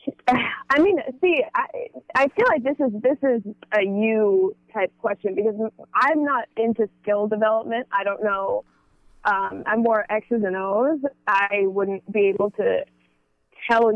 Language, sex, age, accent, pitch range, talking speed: English, female, 20-39, American, 205-255 Hz, 155 wpm